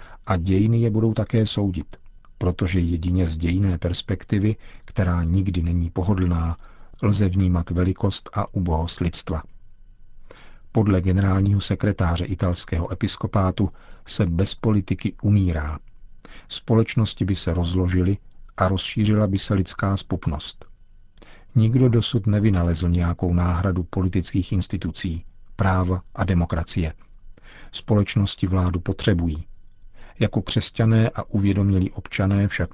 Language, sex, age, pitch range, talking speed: Czech, male, 40-59, 90-105 Hz, 110 wpm